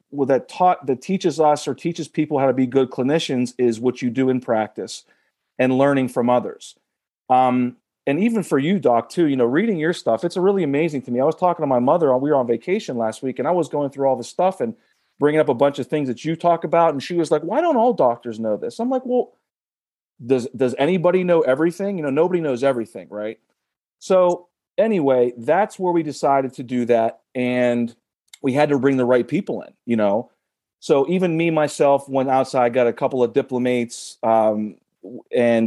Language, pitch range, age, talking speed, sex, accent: English, 120-160 Hz, 40-59, 220 wpm, male, American